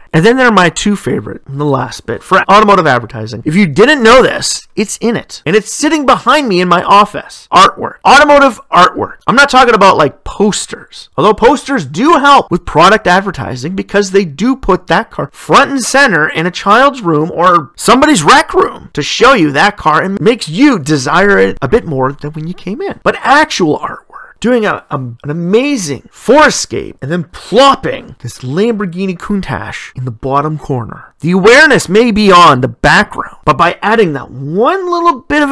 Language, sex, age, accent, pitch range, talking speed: English, male, 30-49, American, 155-240 Hz, 195 wpm